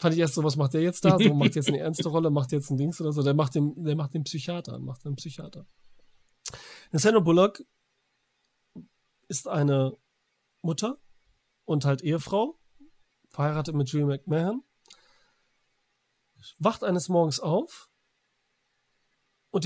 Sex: male